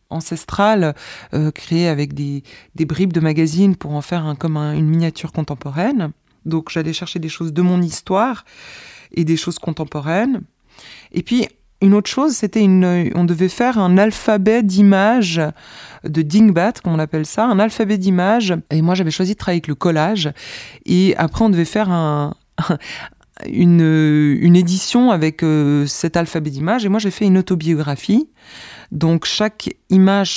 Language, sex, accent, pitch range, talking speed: French, female, French, 155-195 Hz, 165 wpm